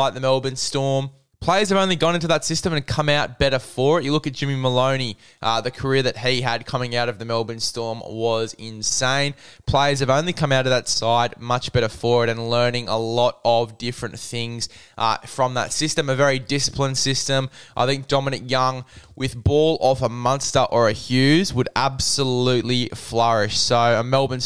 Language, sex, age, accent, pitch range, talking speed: English, male, 10-29, Australian, 120-135 Hz, 195 wpm